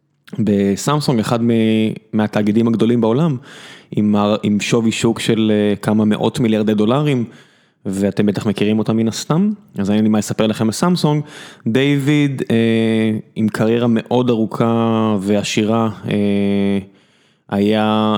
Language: Hebrew